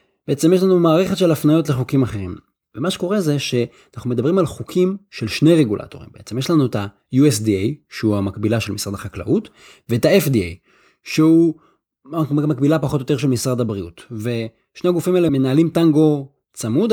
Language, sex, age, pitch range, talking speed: Hebrew, male, 30-49, 115-165 Hz, 155 wpm